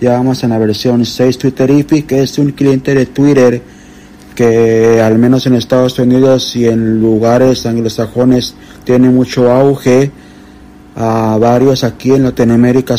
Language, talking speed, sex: Spanish, 145 wpm, male